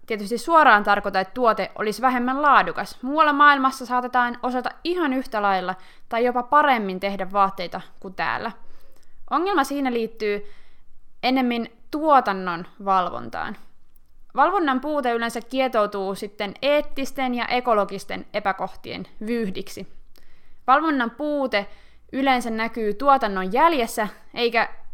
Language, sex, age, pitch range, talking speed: Finnish, female, 20-39, 200-265 Hz, 110 wpm